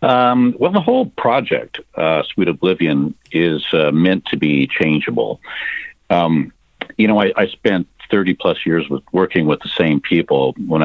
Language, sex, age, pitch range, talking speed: English, male, 50-69, 75-100 Hz, 155 wpm